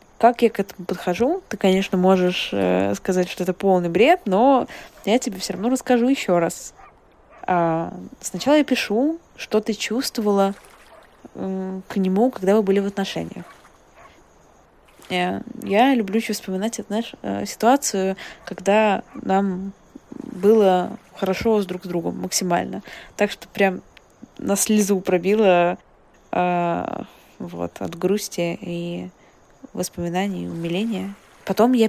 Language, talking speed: Russian, 130 wpm